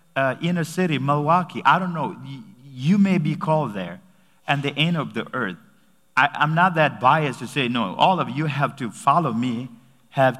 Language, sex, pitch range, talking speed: English, male, 130-170 Hz, 200 wpm